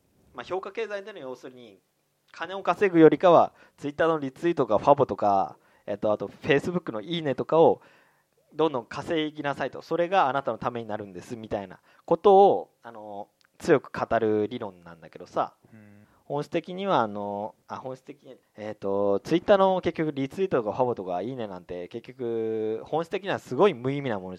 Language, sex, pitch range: Japanese, male, 110-175 Hz